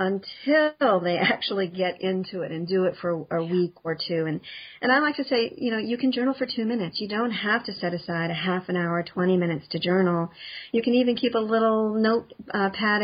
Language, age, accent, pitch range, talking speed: English, 40-59, American, 180-220 Hz, 235 wpm